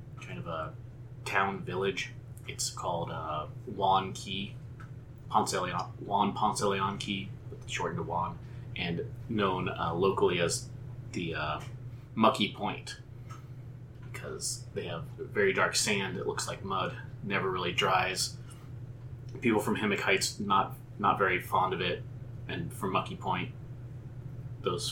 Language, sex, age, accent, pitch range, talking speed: English, male, 30-49, American, 120-125 Hz, 135 wpm